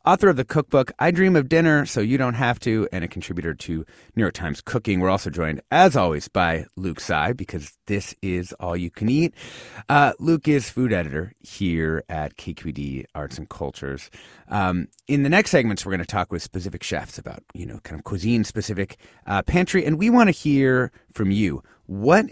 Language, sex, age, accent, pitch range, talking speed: English, male, 30-49, American, 90-140 Hz, 200 wpm